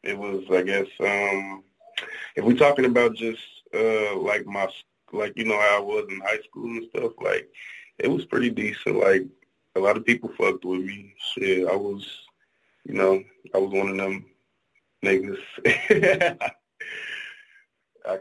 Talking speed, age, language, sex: 160 wpm, 20-39, English, male